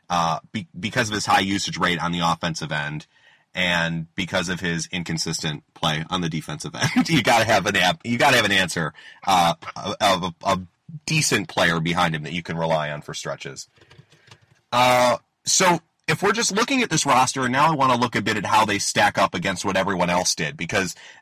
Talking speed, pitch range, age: 220 wpm, 95-135 Hz, 30-49